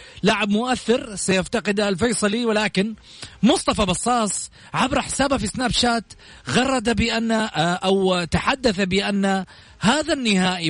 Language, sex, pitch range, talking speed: Arabic, male, 170-220 Hz, 105 wpm